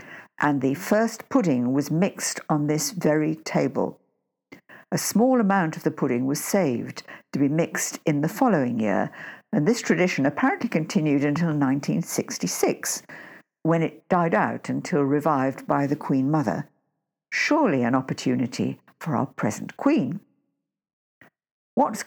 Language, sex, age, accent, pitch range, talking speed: English, female, 60-79, British, 145-185 Hz, 135 wpm